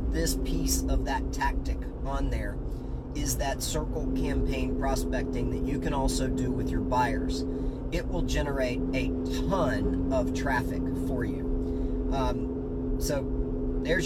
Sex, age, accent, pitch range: male, 40-59, American, 105-140 Hz